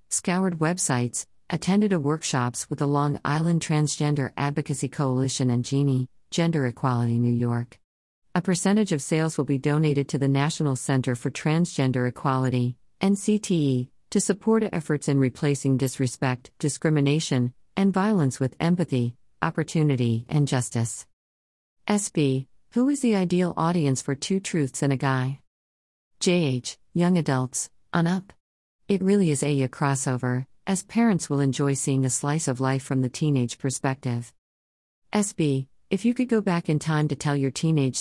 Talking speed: 150 wpm